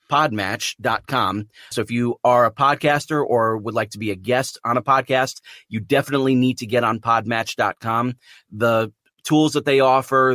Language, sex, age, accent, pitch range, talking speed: English, male, 30-49, American, 115-135 Hz, 170 wpm